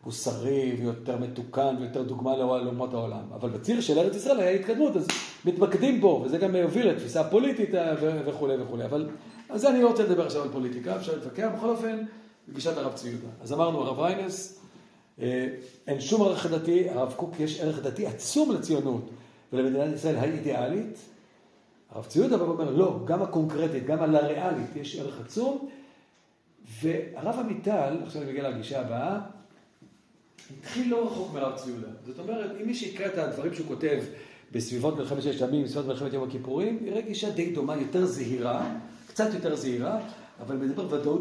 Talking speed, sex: 155 wpm, male